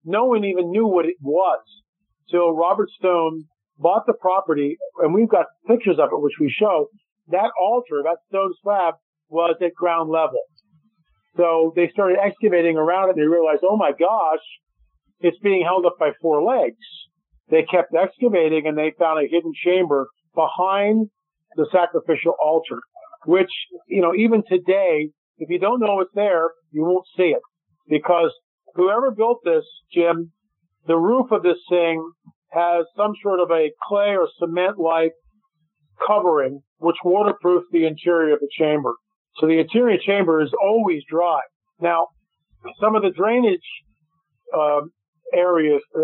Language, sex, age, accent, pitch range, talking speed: English, male, 50-69, American, 160-200 Hz, 155 wpm